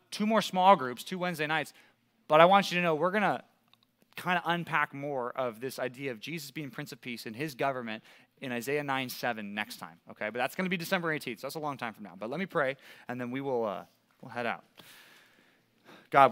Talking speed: 240 wpm